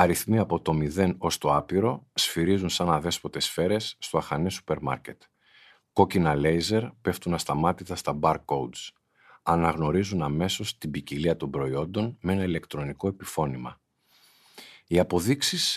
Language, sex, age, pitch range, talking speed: Greek, male, 50-69, 80-105 Hz, 130 wpm